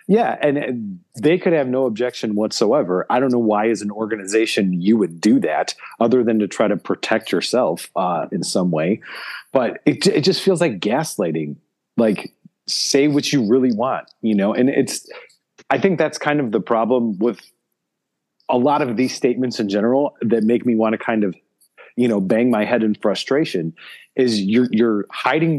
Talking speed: 190 wpm